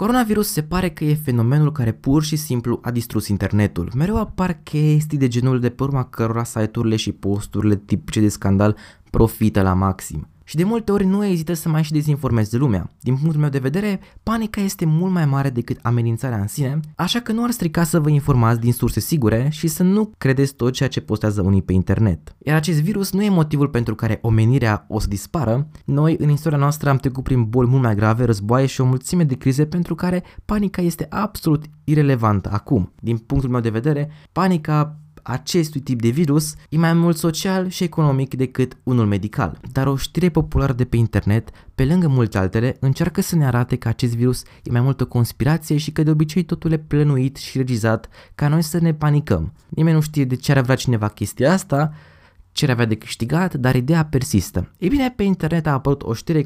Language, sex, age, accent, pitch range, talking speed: Romanian, male, 20-39, native, 115-160 Hz, 205 wpm